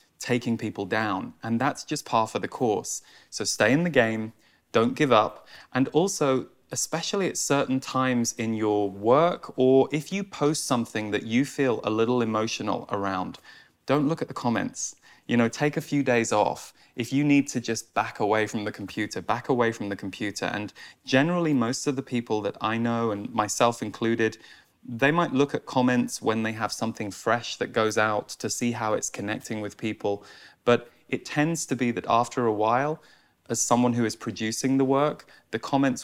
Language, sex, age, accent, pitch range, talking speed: English, male, 20-39, British, 110-135 Hz, 195 wpm